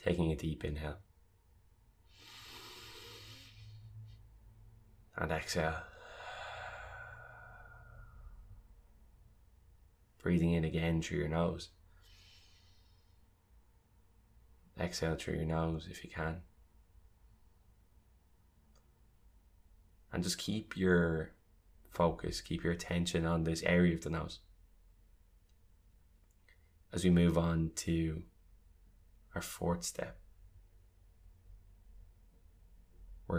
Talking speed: 75 wpm